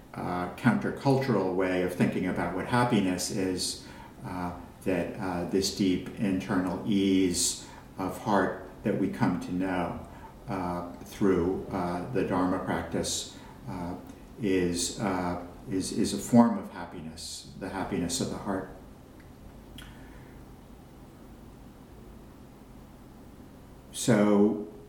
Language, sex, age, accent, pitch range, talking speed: English, male, 60-79, American, 90-100 Hz, 100 wpm